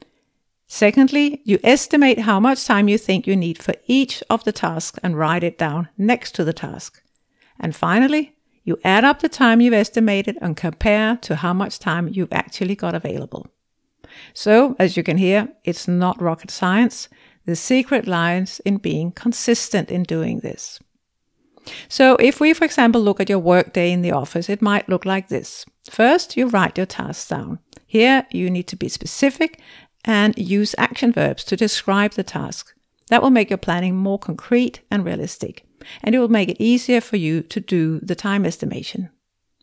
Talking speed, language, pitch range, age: 180 wpm, English, 180-240 Hz, 60-79